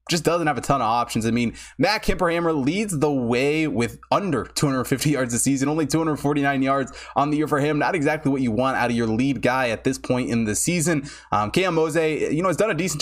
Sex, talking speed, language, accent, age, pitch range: male, 240 wpm, English, American, 20-39, 120-150 Hz